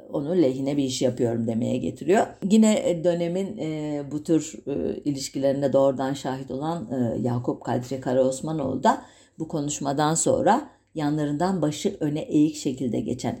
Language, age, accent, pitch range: German, 60-79, Turkish, 135-175 Hz